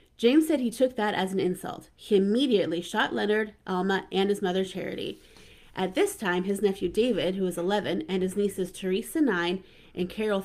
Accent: American